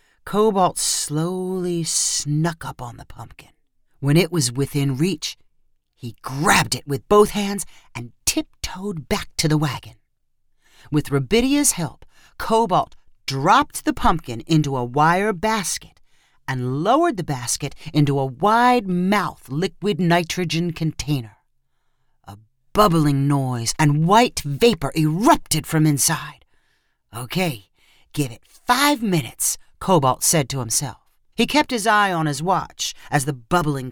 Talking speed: 130 wpm